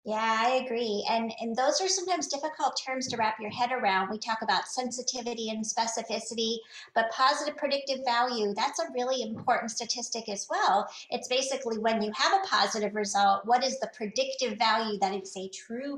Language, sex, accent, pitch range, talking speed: English, female, American, 205-250 Hz, 185 wpm